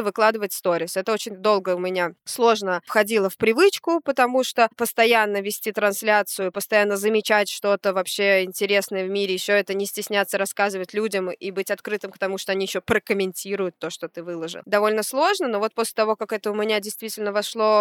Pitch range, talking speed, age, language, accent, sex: 200-260 Hz, 180 wpm, 20-39, Russian, native, female